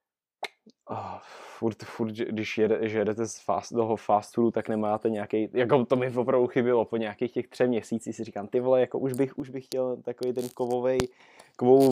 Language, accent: Czech, native